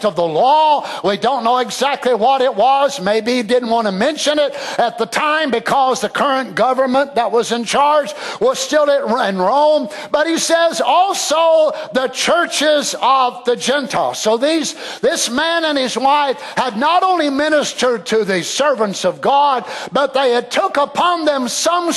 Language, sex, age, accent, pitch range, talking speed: English, male, 50-69, American, 235-300 Hz, 175 wpm